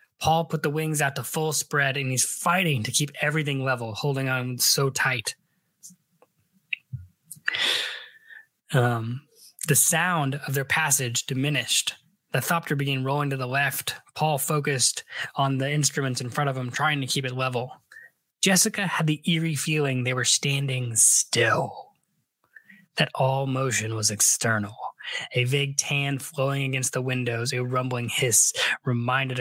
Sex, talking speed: male, 145 wpm